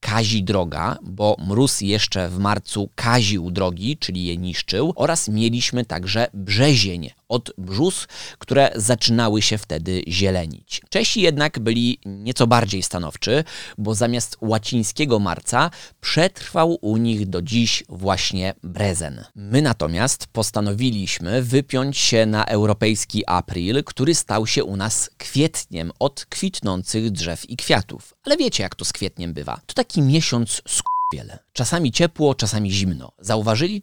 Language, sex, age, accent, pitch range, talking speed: Polish, male, 20-39, native, 100-135 Hz, 135 wpm